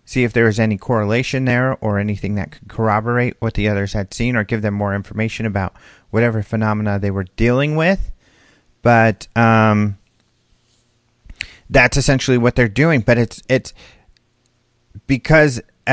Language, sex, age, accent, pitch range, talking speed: English, male, 40-59, American, 105-130 Hz, 150 wpm